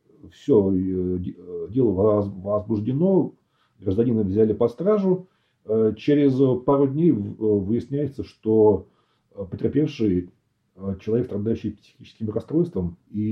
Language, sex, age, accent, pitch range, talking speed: Russian, male, 40-59, native, 95-115 Hz, 80 wpm